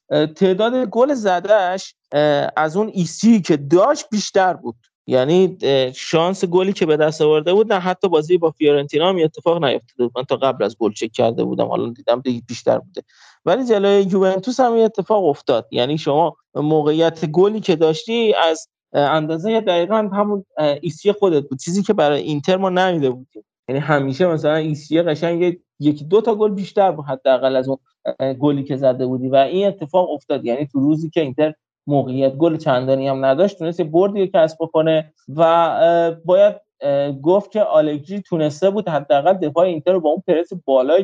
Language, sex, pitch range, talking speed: Persian, male, 150-205 Hz, 170 wpm